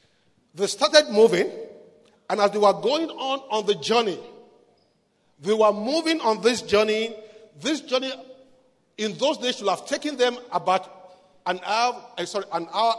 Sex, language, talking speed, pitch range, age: male, English, 150 wpm, 170-230 Hz, 50-69